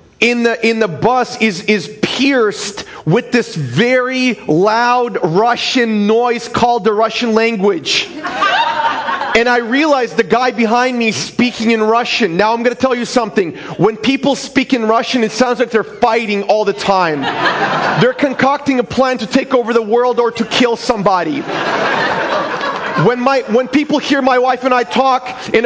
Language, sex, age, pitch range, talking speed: English, male, 30-49, 225-255 Hz, 170 wpm